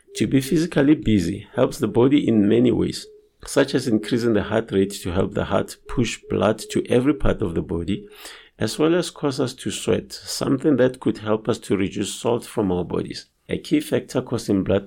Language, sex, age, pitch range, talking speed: English, male, 50-69, 100-135 Hz, 205 wpm